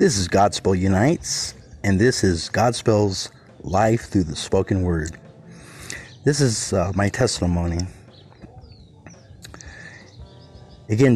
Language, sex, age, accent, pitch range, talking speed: English, male, 30-49, American, 95-110 Hz, 100 wpm